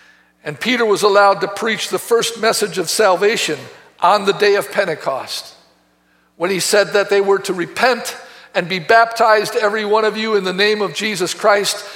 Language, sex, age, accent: English, male, 50-69, American